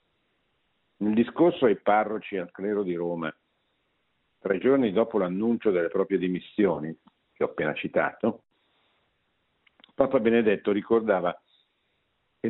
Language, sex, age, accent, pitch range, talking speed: Italian, male, 50-69, native, 95-115 Hz, 110 wpm